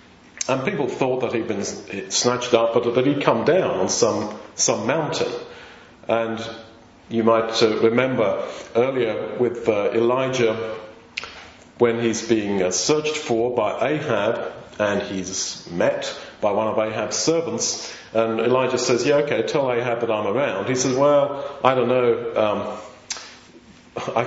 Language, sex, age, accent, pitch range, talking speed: English, male, 40-59, British, 115-150 Hz, 140 wpm